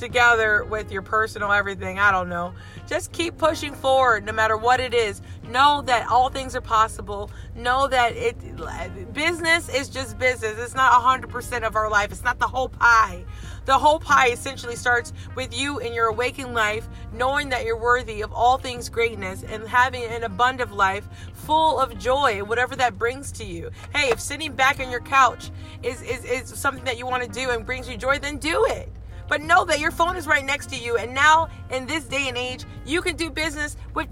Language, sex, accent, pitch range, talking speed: English, female, American, 235-320 Hz, 210 wpm